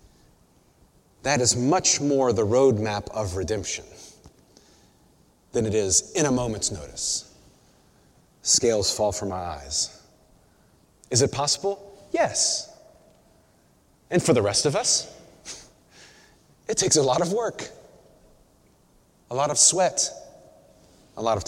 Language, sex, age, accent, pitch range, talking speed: English, male, 30-49, American, 120-200 Hz, 120 wpm